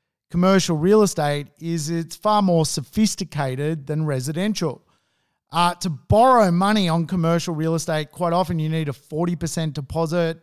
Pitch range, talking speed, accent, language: 155-180 Hz, 145 wpm, Australian, English